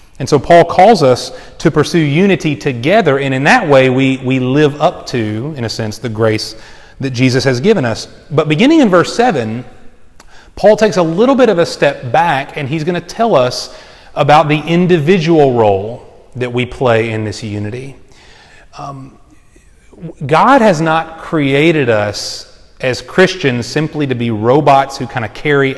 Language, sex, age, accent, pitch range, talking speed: English, male, 30-49, American, 120-155 Hz, 170 wpm